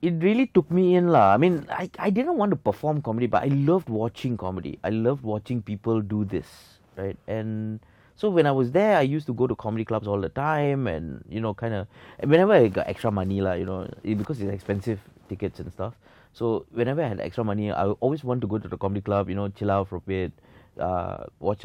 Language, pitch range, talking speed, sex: English, 100-135 Hz, 240 wpm, male